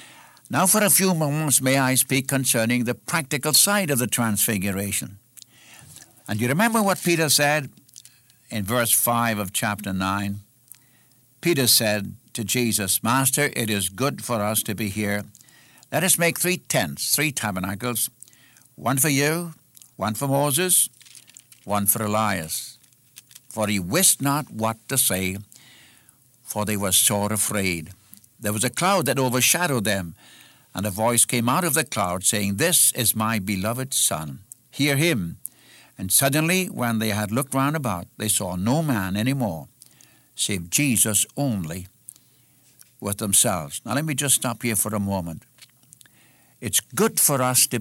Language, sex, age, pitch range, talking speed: English, male, 60-79, 110-140 Hz, 155 wpm